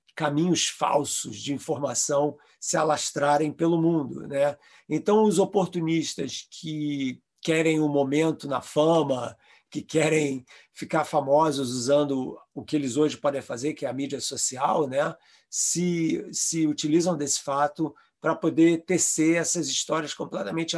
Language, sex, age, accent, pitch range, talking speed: Portuguese, male, 40-59, Brazilian, 140-165 Hz, 135 wpm